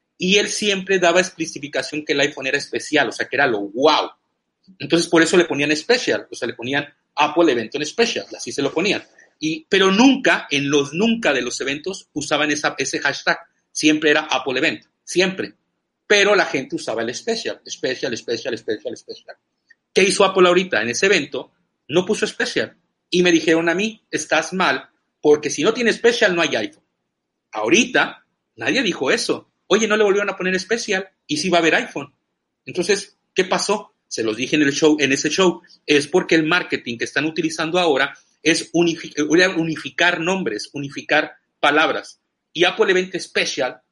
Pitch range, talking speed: 145-195 Hz, 185 wpm